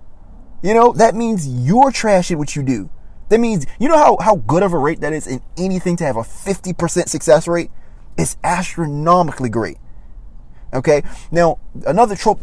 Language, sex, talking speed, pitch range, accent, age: English, male, 180 wpm, 130-190 Hz, American, 30-49